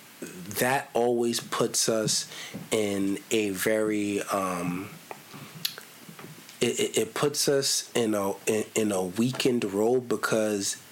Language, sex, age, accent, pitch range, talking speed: English, male, 20-39, American, 100-115 Hz, 115 wpm